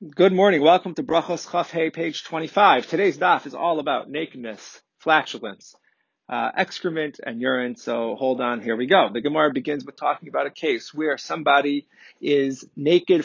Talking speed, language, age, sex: 170 wpm, English, 30-49, male